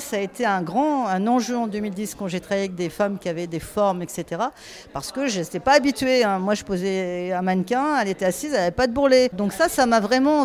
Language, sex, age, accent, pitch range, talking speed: French, female, 40-59, French, 185-240 Hz, 260 wpm